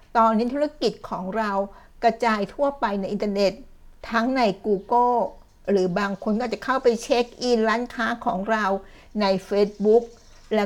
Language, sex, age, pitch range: Thai, female, 60-79, 200-240 Hz